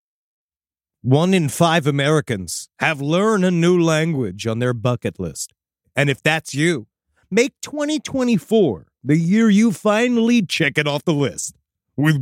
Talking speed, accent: 140 wpm, American